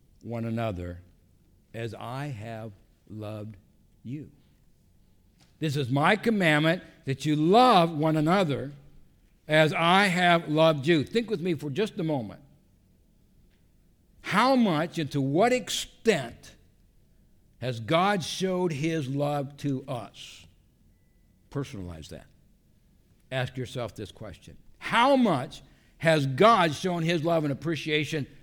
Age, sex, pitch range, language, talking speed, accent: 60-79, male, 95-145 Hz, English, 120 wpm, American